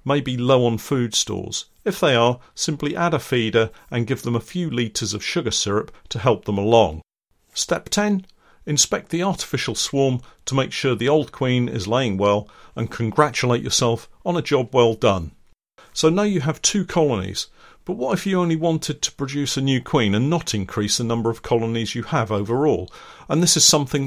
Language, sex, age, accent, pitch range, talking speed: English, male, 50-69, British, 115-150 Hz, 200 wpm